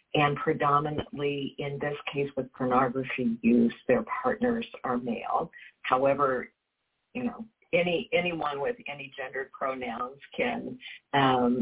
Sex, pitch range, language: female, 135-210 Hz, English